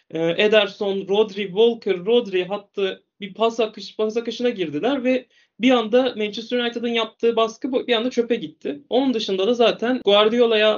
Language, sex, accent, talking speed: Turkish, male, native, 150 wpm